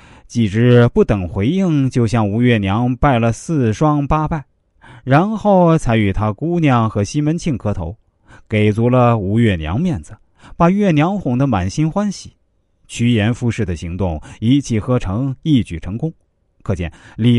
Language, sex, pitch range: Chinese, male, 95-145 Hz